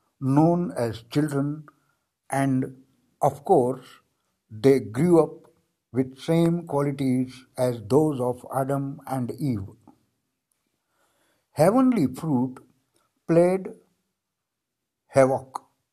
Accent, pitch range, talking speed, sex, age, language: native, 120-165 Hz, 85 wpm, male, 60-79, Hindi